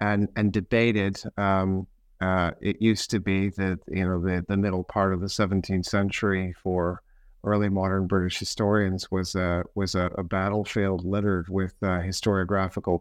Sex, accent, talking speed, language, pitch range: male, American, 160 wpm, English, 95-110 Hz